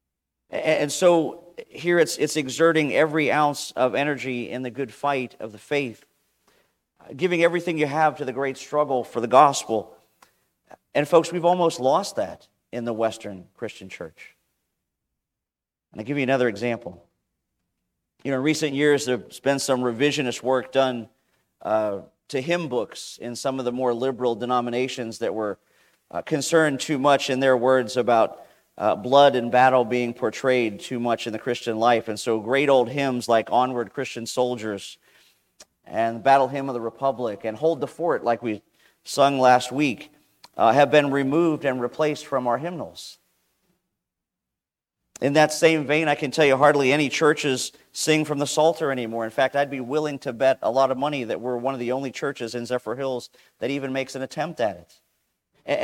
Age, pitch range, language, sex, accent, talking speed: 40-59, 120-150 Hz, English, male, American, 180 wpm